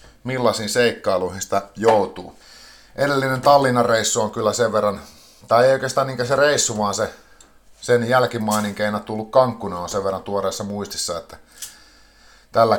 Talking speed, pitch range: 140 wpm, 100-130 Hz